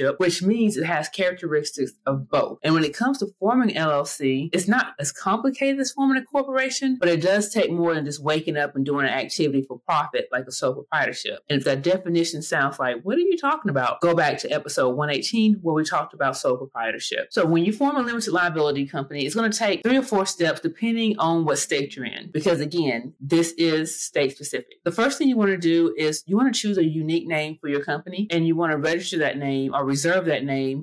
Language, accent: English, American